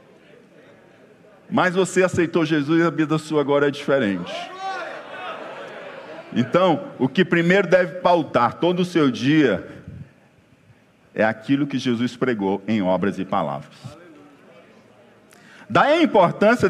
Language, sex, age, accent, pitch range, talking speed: Portuguese, male, 50-69, Brazilian, 125-175 Hz, 120 wpm